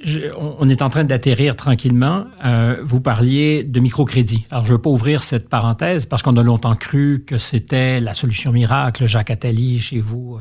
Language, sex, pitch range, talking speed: French, male, 115-145 Hz, 200 wpm